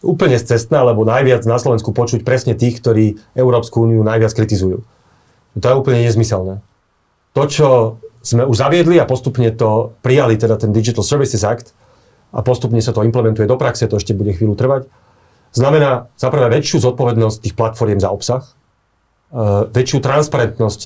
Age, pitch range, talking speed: 40-59, 110-135 Hz, 150 wpm